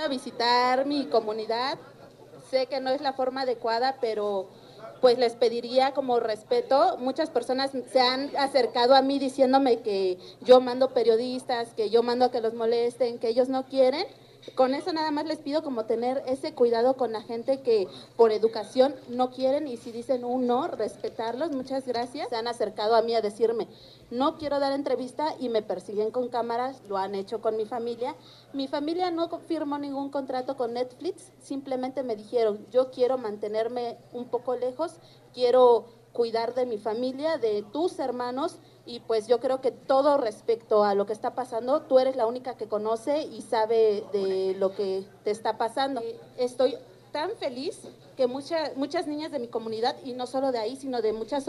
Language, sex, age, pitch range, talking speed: Spanish, female, 30-49, 230-275 Hz, 180 wpm